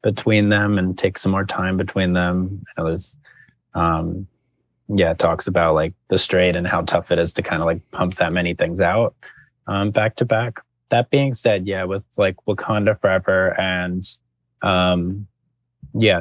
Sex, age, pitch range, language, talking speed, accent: male, 20-39, 95-125 Hz, English, 165 wpm, American